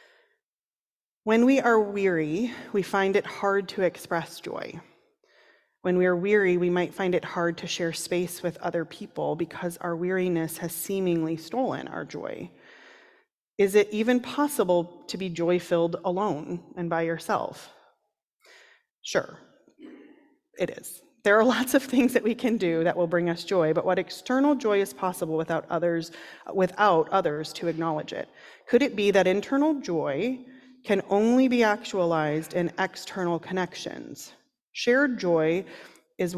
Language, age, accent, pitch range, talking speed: English, 30-49, American, 175-225 Hz, 150 wpm